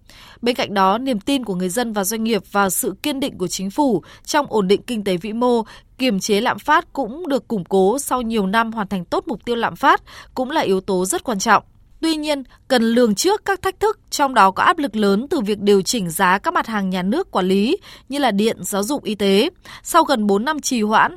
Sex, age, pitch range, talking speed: female, 20-39, 200-260 Hz, 250 wpm